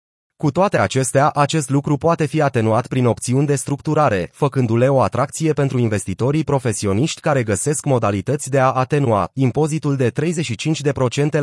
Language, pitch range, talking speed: Romanian, 120-150 Hz, 140 wpm